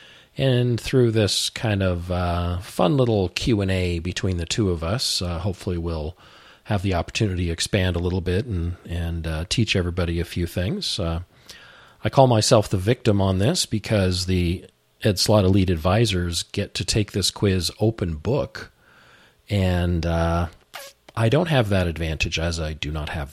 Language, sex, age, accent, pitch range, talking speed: English, male, 40-59, American, 85-105 Hz, 170 wpm